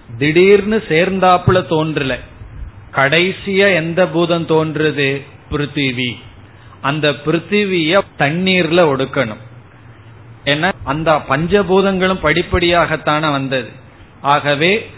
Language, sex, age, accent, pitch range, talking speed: Tamil, male, 30-49, native, 125-170 Hz, 60 wpm